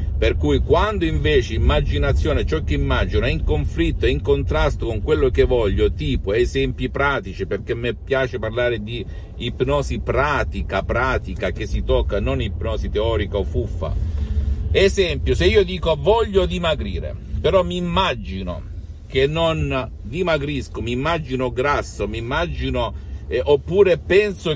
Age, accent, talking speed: 50-69, native, 140 wpm